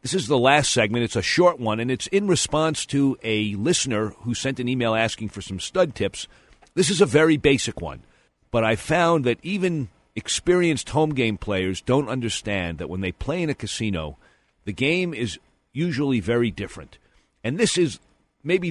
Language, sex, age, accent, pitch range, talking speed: English, male, 50-69, American, 100-140 Hz, 190 wpm